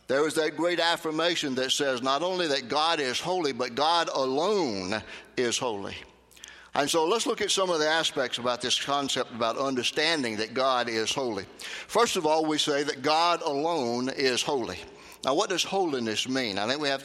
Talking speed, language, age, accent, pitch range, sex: 195 wpm, English, 60-79, American, 125-170 Hz, male